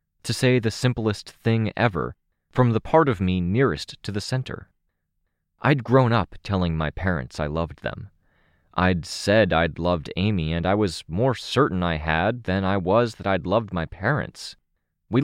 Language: English